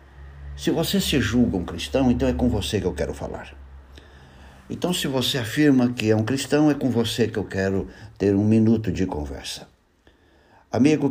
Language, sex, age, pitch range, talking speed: Portuguese, male, 60-79, 95-125 Hz, 185 wpm